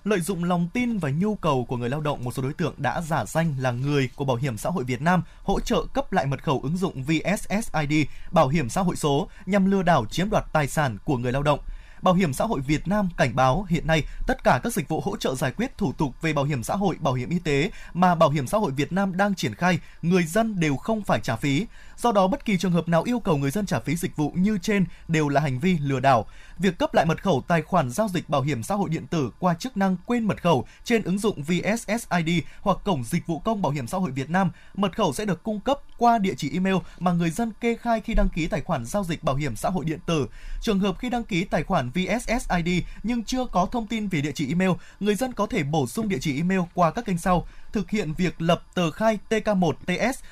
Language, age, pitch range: Vietnamese, 20-39, 150-205 Hz